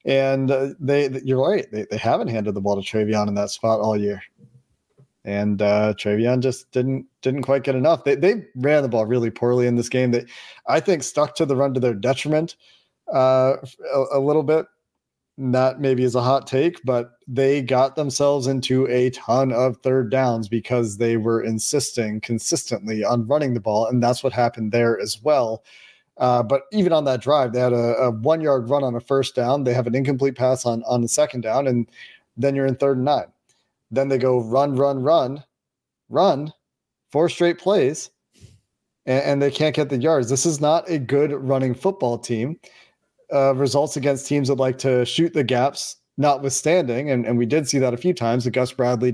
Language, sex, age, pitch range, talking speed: English, male, 40-59, 120-140 Hz, 205 wpm